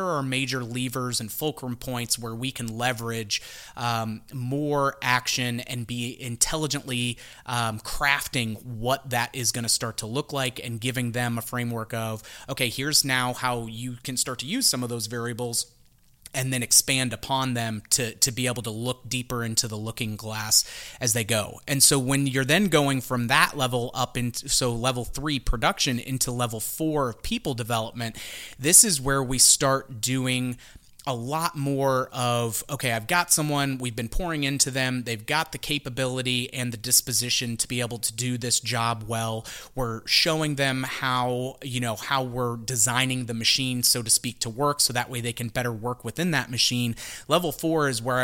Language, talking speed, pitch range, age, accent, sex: English, 185 wpm, 115-135 Hz, 30-49, American, male